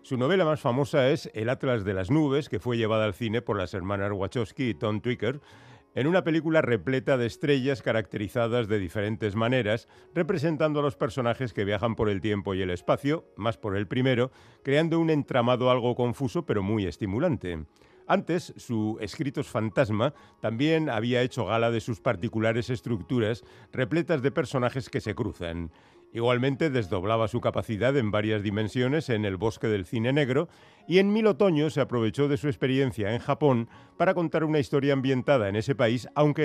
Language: Spanish